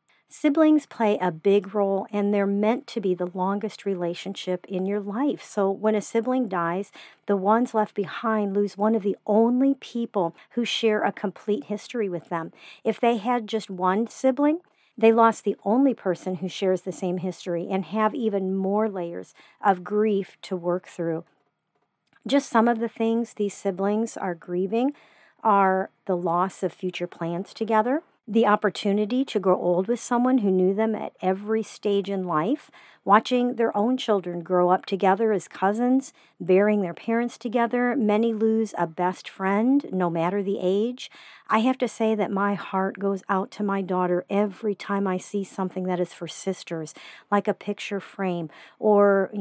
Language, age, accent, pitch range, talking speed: English, 50-69, American, 185-220 Hz, 175 wpm